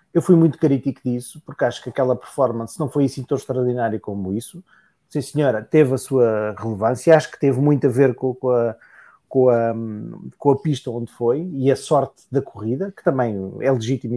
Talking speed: 205 wpm